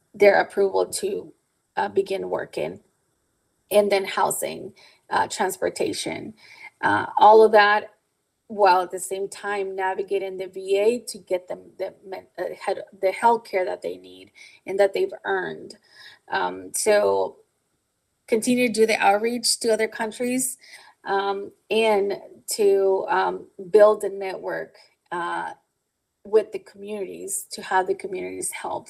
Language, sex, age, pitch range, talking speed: English, female, 20-39, 195-220 Hz, 130 wpm